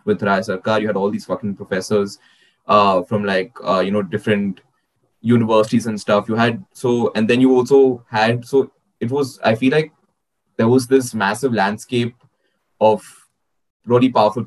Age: 20-39